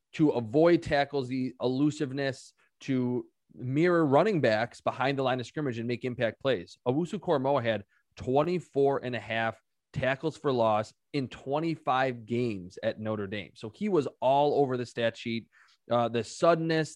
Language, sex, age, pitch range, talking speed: English, male, 20-39, 120-150 Hz, 160 wpm